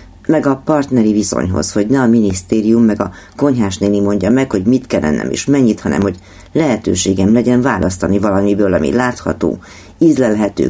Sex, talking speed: female, 165 wpm